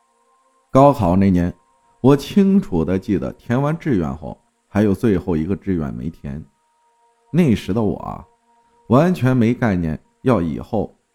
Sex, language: male, Chinese